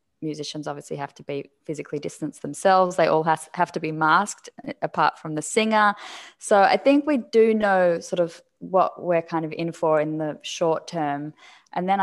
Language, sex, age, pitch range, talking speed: English, female, 20-39, 155-190 Hz, 190 wpm